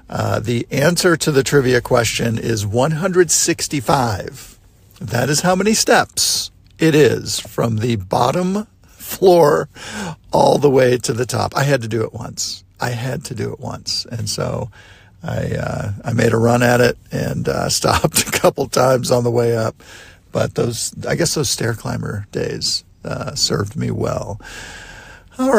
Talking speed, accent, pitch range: 165 wpm, American, 115-145 Hz